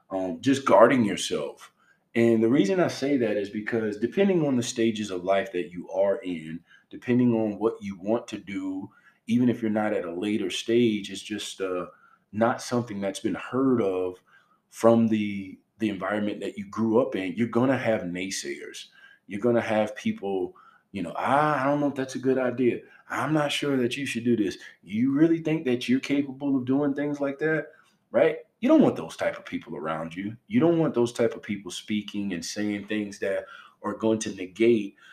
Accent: American